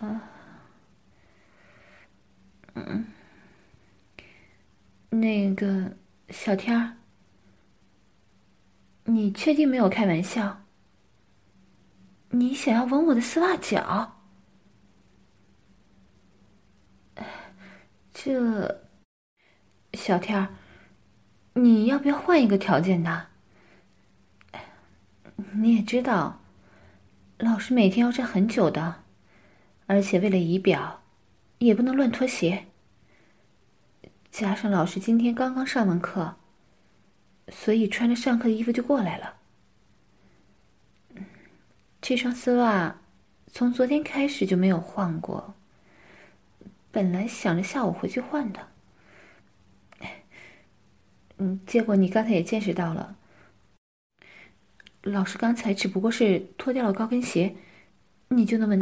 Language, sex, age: English, female, 30-49